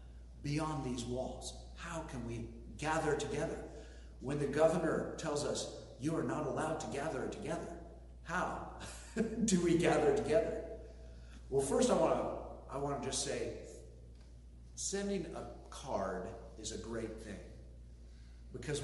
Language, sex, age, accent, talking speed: English, male, 50-69, American, 125 wpm